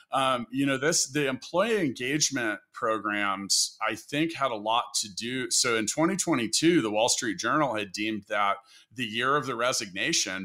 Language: English